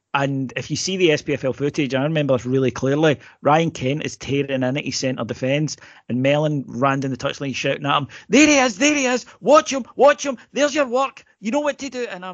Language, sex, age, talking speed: English, male, 40-59, 240 wpm